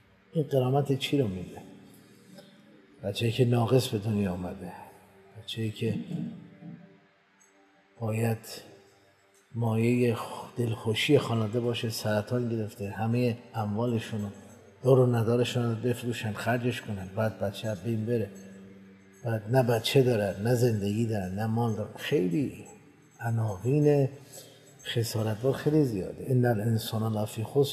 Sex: male